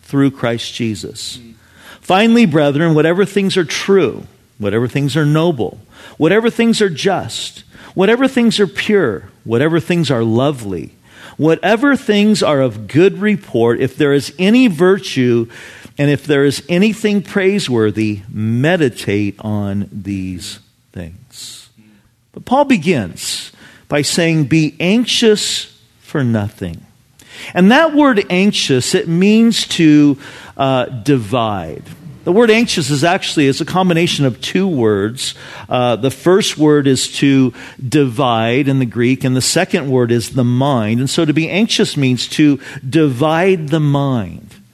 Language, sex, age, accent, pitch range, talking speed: English, male, 50-69, American, 115-185 Hz, 135 wpm